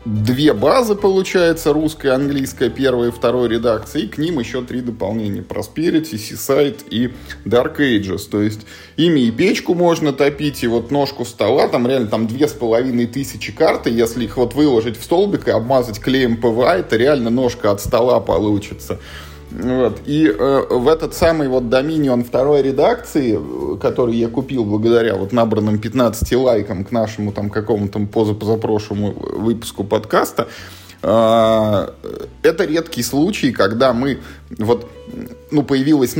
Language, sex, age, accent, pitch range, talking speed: Russian, male, 20-39, native, 105-135 Hz, 145 wpm